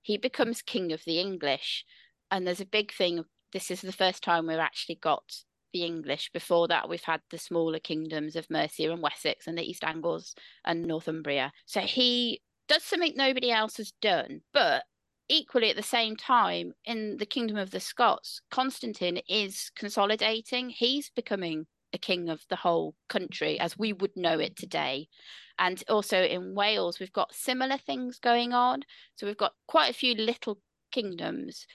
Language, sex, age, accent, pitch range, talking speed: English, female, 30-49, British, 165-230 Hz, 175 wpm